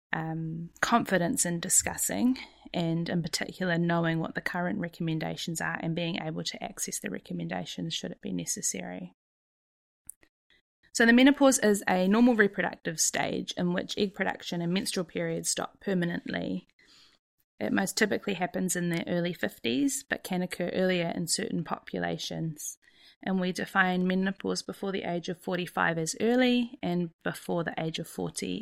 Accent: Australian